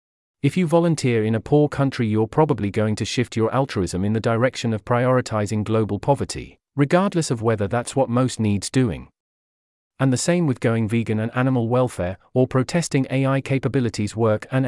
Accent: British